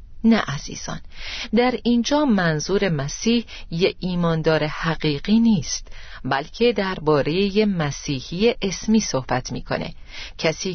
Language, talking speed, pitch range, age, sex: Persian, 95 wpm, 155-225 Hz, 40-59, female